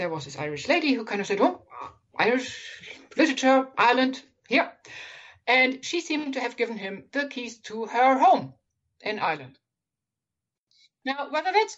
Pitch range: 215-280 Hz